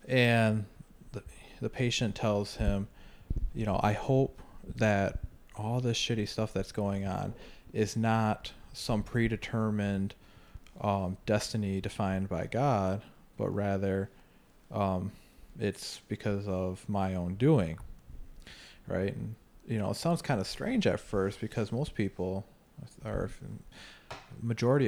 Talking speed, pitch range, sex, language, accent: 125 wpm, 95-115 Hz, male, English, American